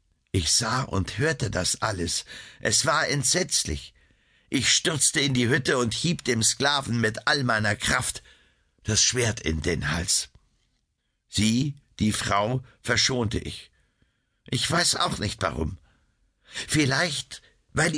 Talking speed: 130 wpm